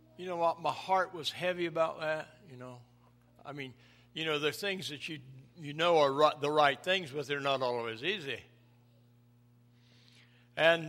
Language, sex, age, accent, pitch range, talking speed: English, male, 60-79, American, 120-160 Hz, 175 wpm